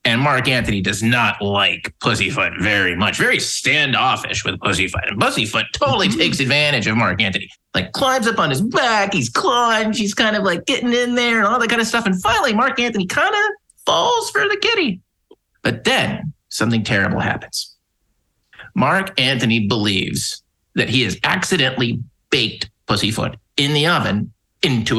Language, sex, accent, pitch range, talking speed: English, male, American, 110-175 Hz, 170 wpm